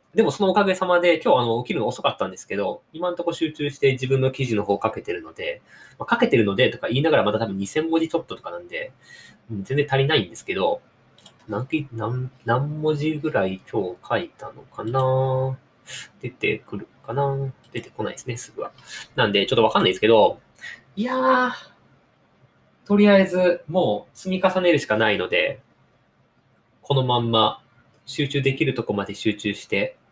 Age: 20-39